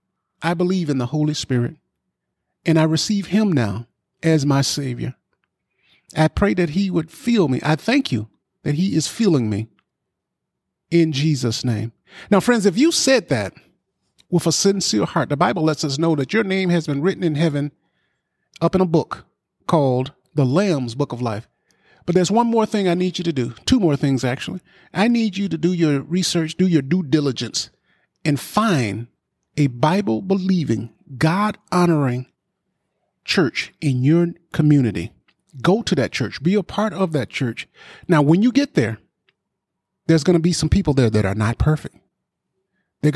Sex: male